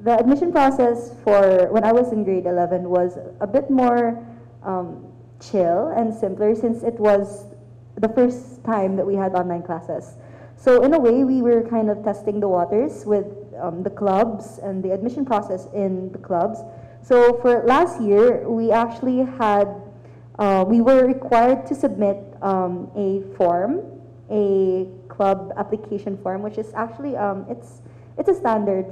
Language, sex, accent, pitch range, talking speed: Filipino, female, native, 185-230 Hz, 165 wpm